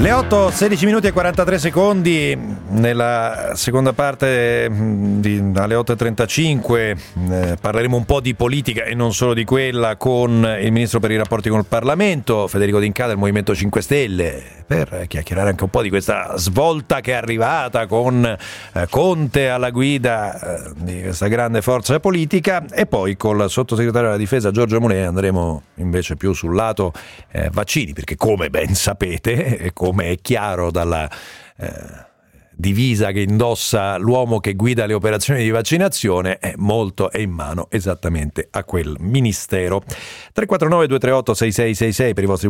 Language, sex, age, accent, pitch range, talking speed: Italian, male, 40-59, native, 95-125 Hz, 160 wpm